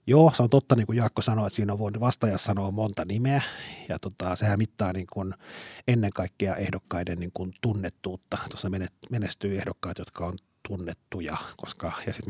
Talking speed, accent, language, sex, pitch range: 165 wpm, native, Finnish, male, 90-115 Hz